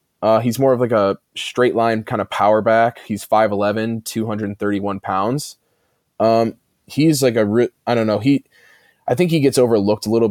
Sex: male